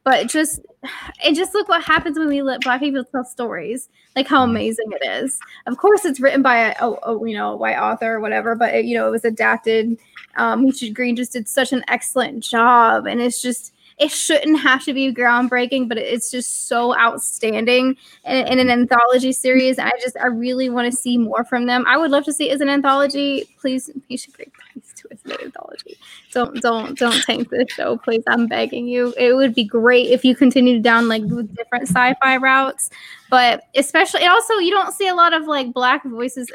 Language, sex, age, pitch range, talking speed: English, female, 10-29, 240-285 Hz, 215 wpm